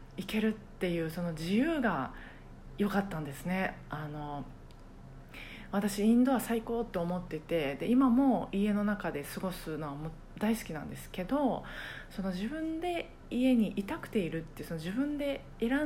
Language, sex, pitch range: Japanese, female, 160-215 Hz